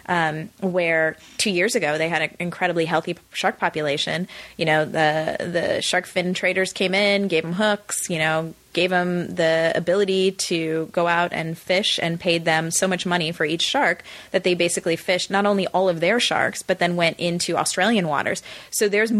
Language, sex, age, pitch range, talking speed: English, female, 20-39, 165-195 Hz, 195 wpm